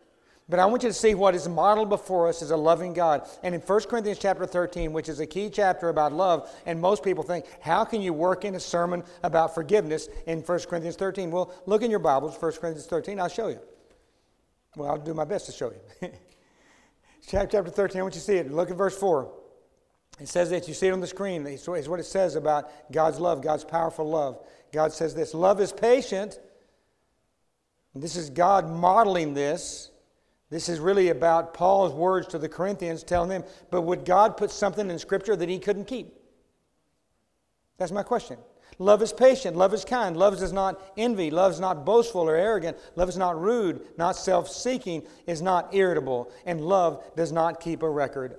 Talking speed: 200 wpm